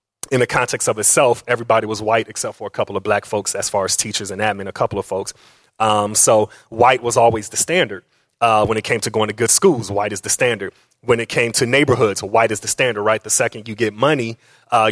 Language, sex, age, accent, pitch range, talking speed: English, male, 30-49, American, 110-130 Hz, 245 wpm